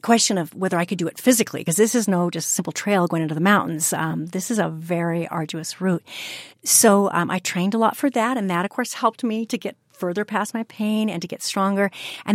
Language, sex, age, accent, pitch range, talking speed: English, female, 40-59, American, 175-220 Hz, 250 wpm